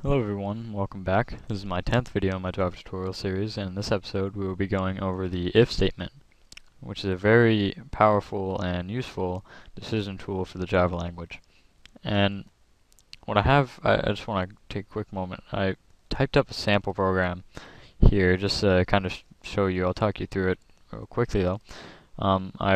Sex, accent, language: male, American, English